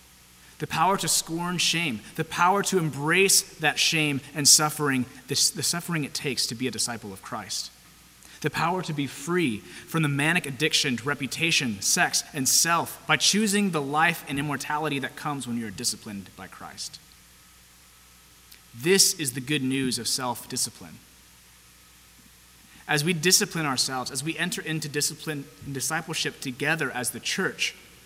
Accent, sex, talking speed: American, male, 155 wpm